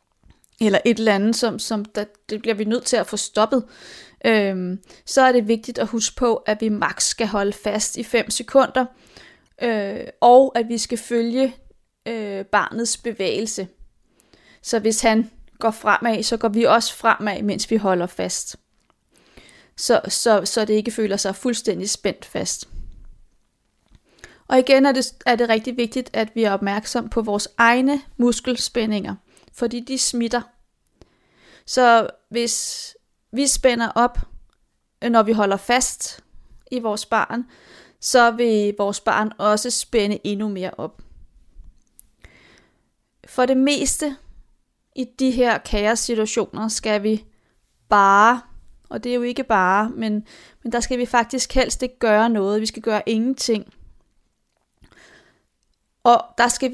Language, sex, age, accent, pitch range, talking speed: Danish, female, 30-49, native, 215-245 Hz, 145 wpm